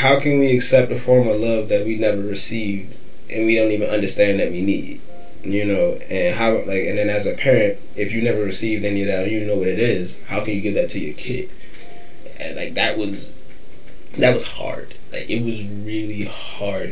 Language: English